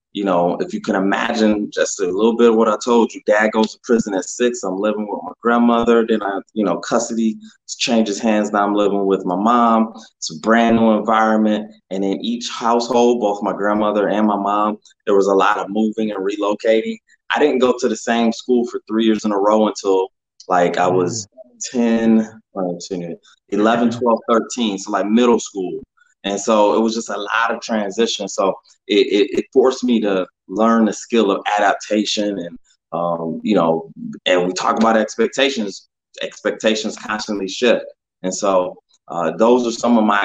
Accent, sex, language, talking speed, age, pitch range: American, male, English, 190 wpm, 20-39, 100-115 Hz